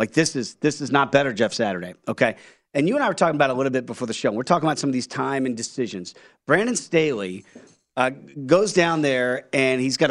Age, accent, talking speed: 40-59, American, 245 wpm